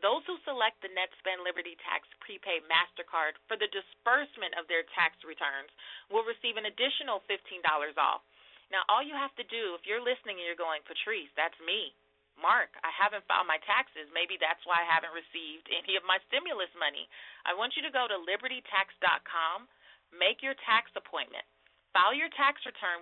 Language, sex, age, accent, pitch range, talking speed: English, female, 30-49, American, 170-230 Hz, 180 wpm